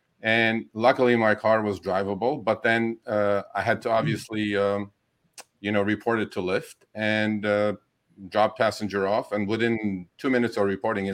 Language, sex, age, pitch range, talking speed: English, male, 50-69, 100-120 Hz, 165 wpm